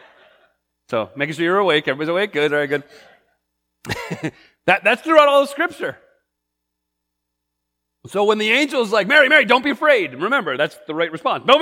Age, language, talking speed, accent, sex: 30-49, English, 165 wpm, American, male